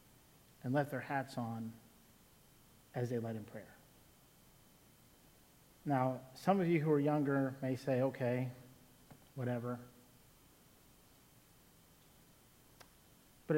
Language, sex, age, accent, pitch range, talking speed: English, male, 50-69, American, 140-180 Hz, 95 wpm